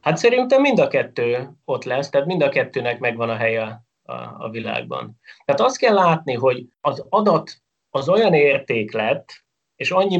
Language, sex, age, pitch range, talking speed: Hungarian, male, 30-49, 115-170 Hz, 175 wpm